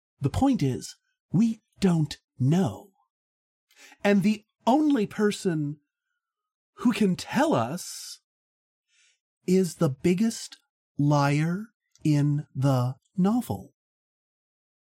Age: 40-59